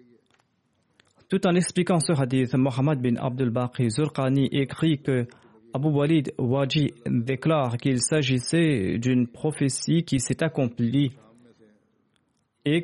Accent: French